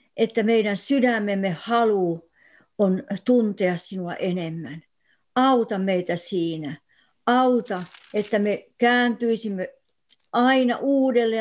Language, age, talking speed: Finnish, 60-79, 90 wpm